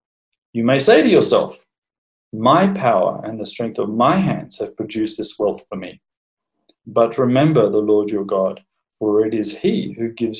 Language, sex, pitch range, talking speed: English, male, 115-165 Hz, 180 wpm